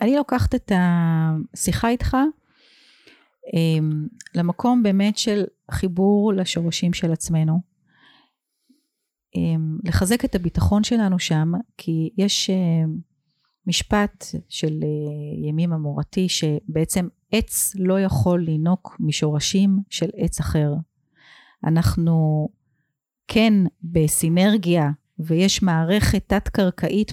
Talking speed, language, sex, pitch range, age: 85 wpm, Hebrew, female, 165-205 Hz, 40-59